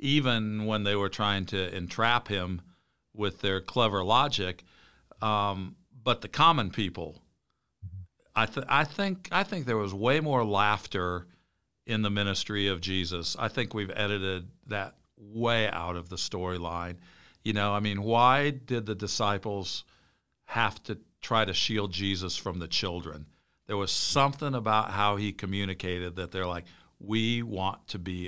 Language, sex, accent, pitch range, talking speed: English, male, American, 95-115 Hz, 150 wpm